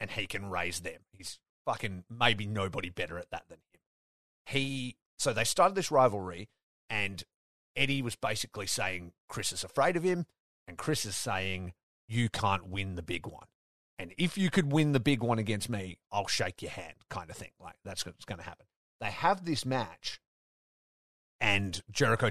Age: 30-49